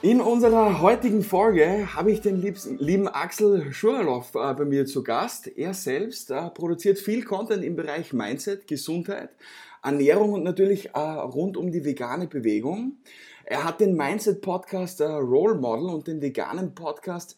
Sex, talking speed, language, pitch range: male, 150 wpm, German, 145-200 Hz